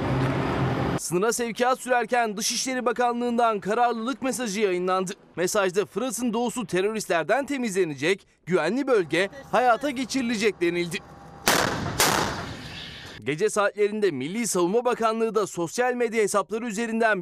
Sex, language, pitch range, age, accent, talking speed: male, Turkish, 190-245 Hz, 30-49, native, 100 wpm